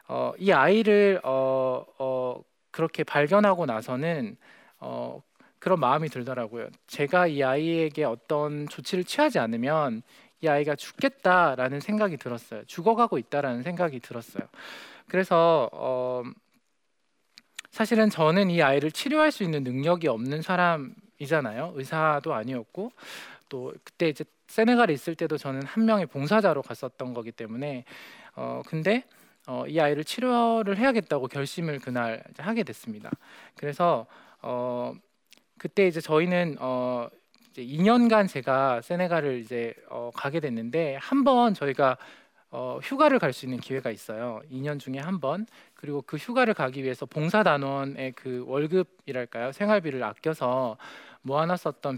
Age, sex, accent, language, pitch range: 20-39, male, native, Korean, 130-185 Hz